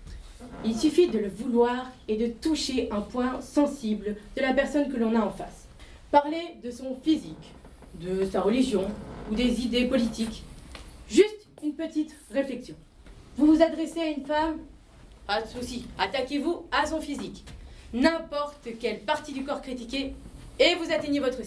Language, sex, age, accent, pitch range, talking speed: French, female, 30-49, French, 225-290 Hz, 160 wpm